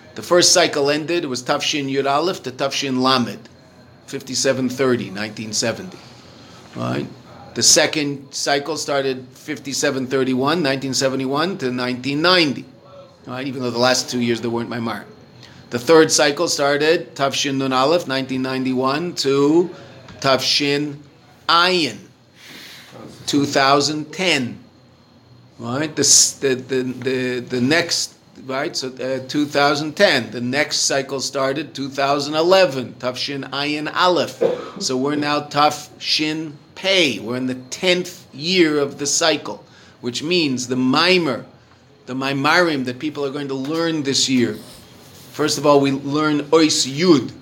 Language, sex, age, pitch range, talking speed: English, male, 40-59, 125-150 Hz, 130 wpm